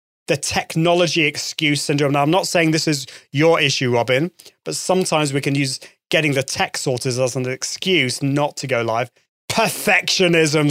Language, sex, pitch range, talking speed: English, male, 130-170 Hz, 170 wpm